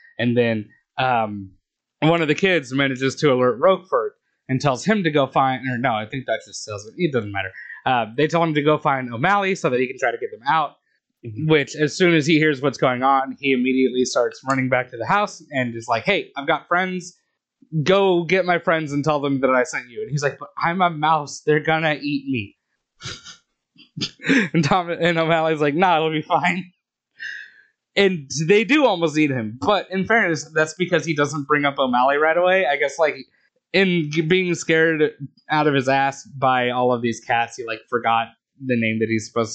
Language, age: English, 20-39